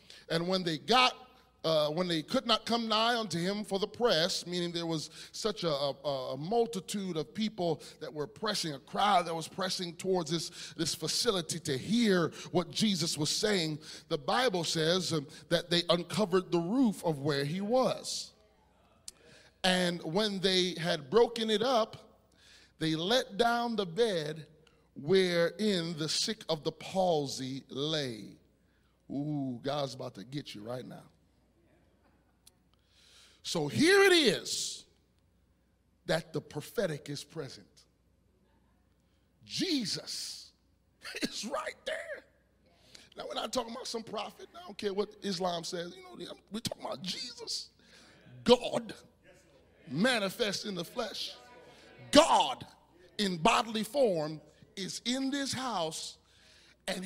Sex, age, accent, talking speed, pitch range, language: male, 30-49, American, 135 wpm, 155-215 Hz, English